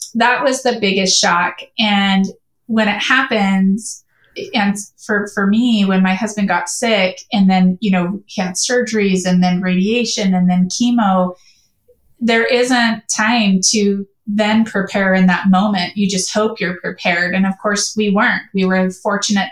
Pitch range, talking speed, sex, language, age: 185-215 Hz, 160 wpm, female, English, 20-39